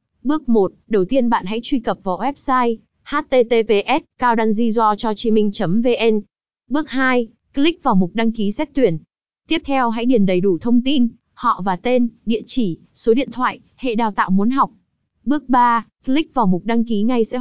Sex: female